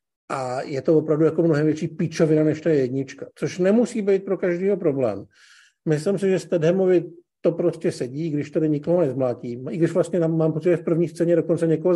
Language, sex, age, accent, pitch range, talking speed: Czech, male, 50-69, native, 150-175 Hz, 200 wpm